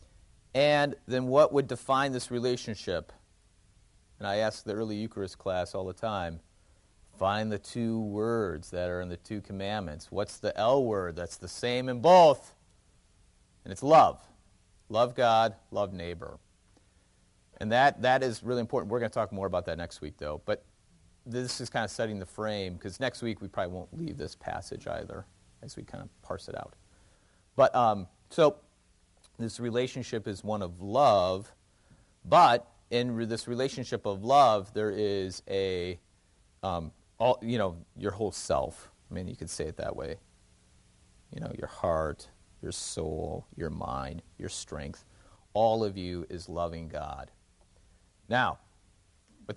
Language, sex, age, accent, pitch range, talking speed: English, male, 40-59, American, 90-115 Hz, 160 wpm